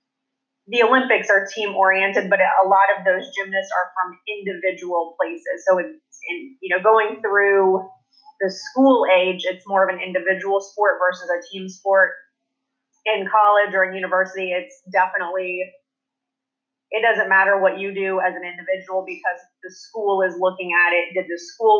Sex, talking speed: female, 160 wpm